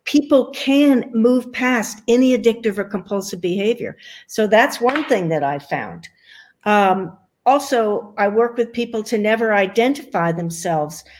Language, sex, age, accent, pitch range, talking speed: English, female, 60-79, American, 185-255 Hz, 140 wpm